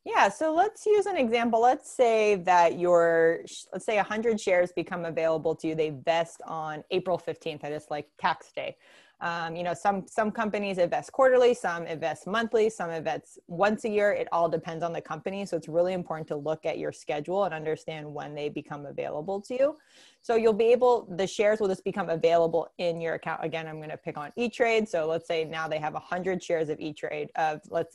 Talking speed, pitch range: 215 wpm, 160-205 Hz